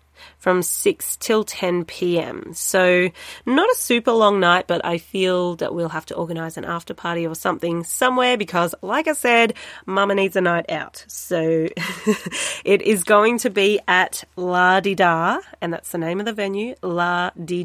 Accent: Australian